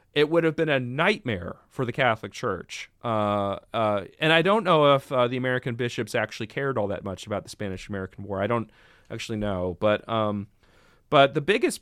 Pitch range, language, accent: 110-140 Hz, English, American